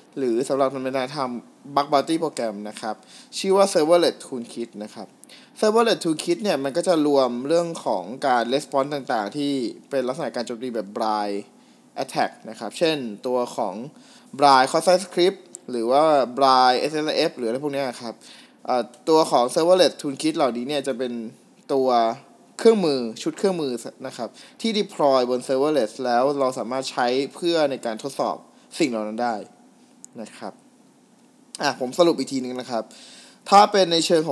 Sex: male